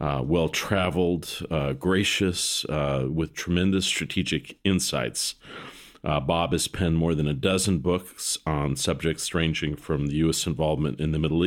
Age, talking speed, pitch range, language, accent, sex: 40-59, 140 wpm, 75-90 Hz, English, American, male